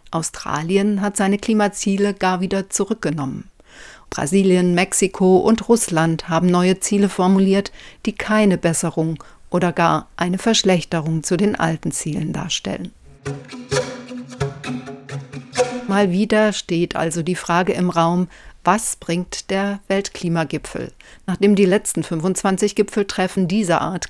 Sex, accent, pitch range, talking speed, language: female, German, 165-200 Hz, 115 wpm, German